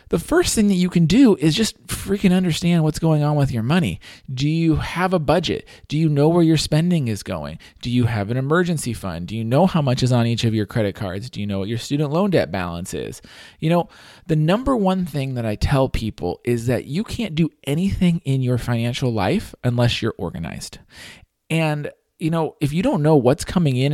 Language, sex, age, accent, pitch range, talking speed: English, male, 40-59, American, 120-170 Hz, 230 wpm